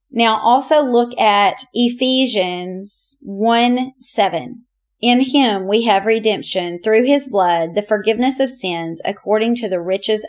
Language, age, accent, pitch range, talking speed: English, 30-49, American, 195-235 Hz, 135 wpm